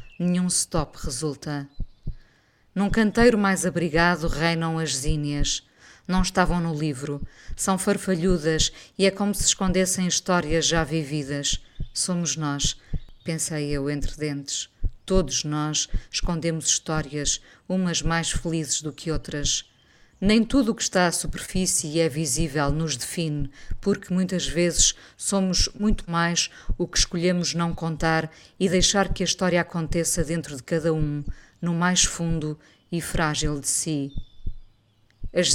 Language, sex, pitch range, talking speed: Portuguese, female, 150-180 Hz, 135 wpm